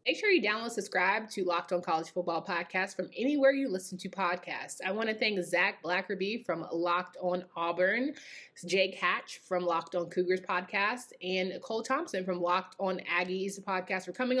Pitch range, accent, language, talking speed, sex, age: 185-260 Hz, American, English, 185 wpm, female, 20-39